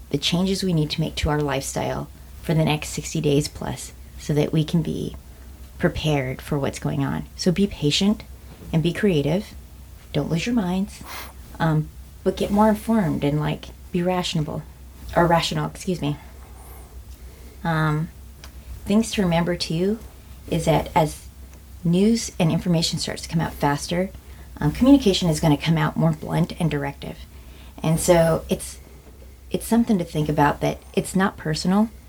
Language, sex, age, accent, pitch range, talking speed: English, female, 30-49, American, 135-175 Hz, 165 wpm